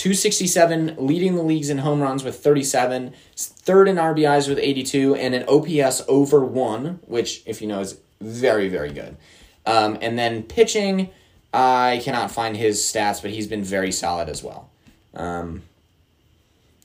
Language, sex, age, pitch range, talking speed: English, male, 20-39, 105-150 Hz, 155 wpm